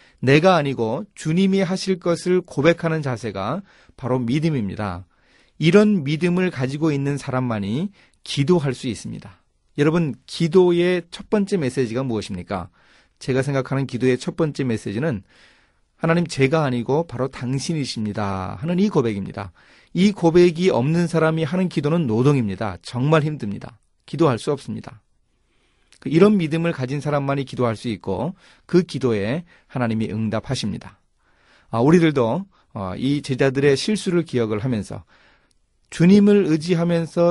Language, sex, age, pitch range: Korean, male, 30-49, 110-165 Hz